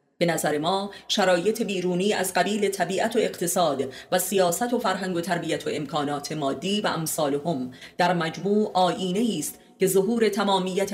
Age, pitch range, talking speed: 30-49, 160-205 Hz, 160 wpm